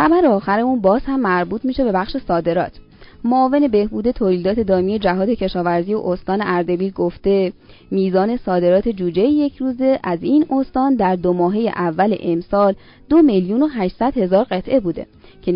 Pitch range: 180-250 Hz